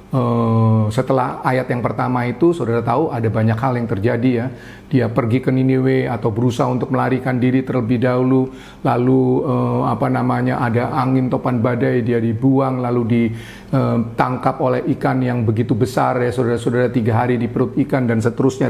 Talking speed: 165 wpm